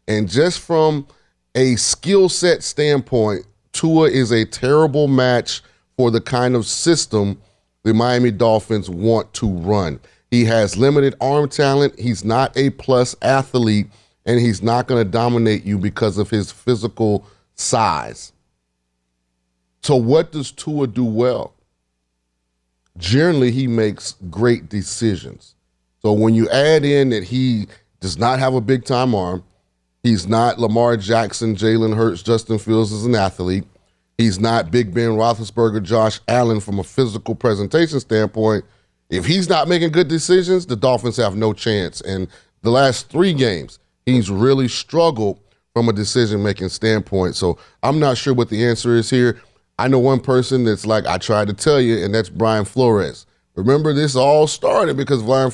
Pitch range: 105-130 Hz